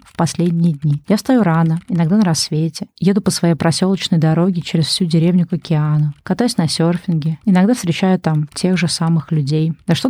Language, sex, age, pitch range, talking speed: Russian, female, 20-39, 155-185 Hz, 185 wpm